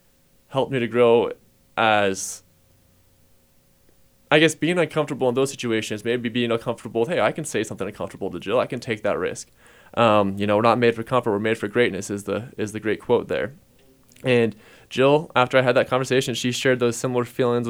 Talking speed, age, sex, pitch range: 205 wpm, 20-39, male, 105-130 Hz